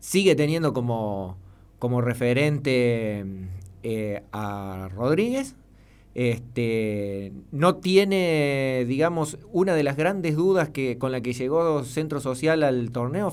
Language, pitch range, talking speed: Spanish, 115-160 Hz, 115 wpm